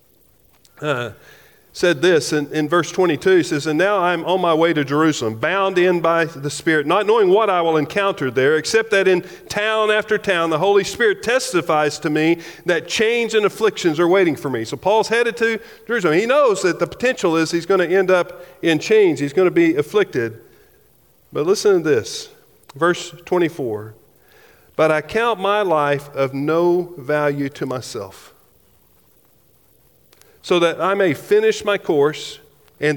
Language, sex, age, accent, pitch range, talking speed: English, male, 40-59, American, 165-220 Hz, 175 wpm